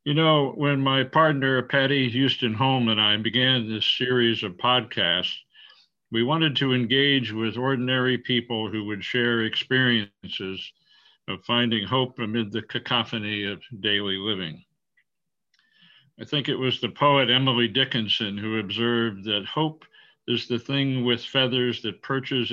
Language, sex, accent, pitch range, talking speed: English, male, American, 110-135 Hz, 145 wpm